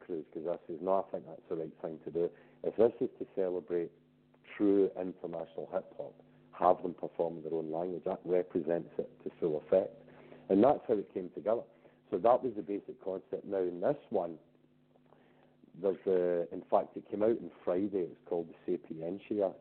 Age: 50-69